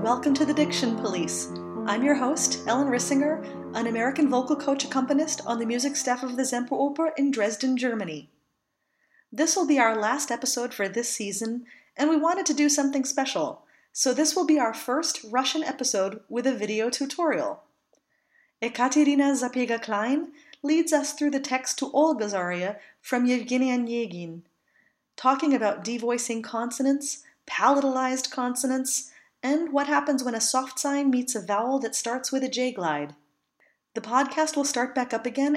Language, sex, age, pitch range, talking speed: English, female, 30-49, 235-285 Hz, 160 wpm